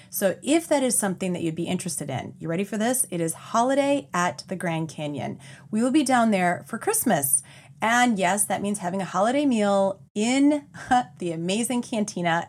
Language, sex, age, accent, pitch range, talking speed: English, female, 30-49, American, 160-225 Hz, 190 wpm